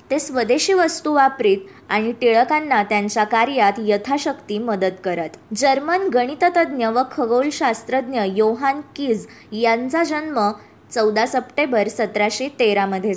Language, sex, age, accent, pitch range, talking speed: Marathi, male, 20-39, native, 220-285 Hz, 105 wpm